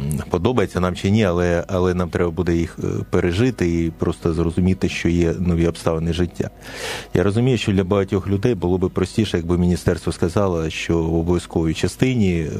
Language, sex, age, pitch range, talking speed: Ukrainian, male, 30-49, 90-105 Hz, 165 wpm